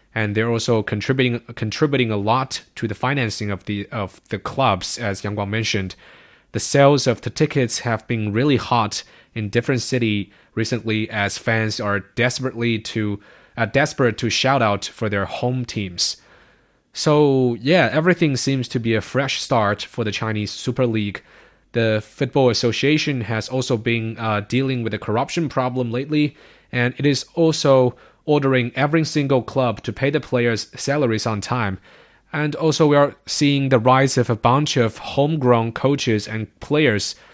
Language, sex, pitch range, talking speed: English, male, 110-135 Hz, 165 wpm